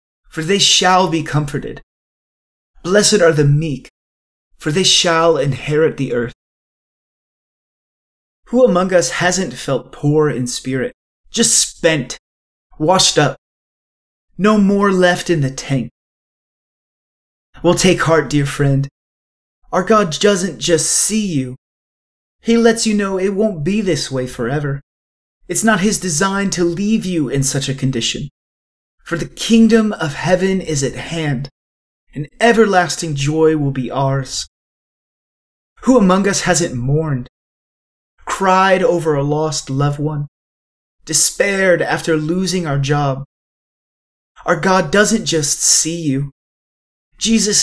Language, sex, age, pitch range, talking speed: English, male, 30-49, 130-185 Hz, 130 wpm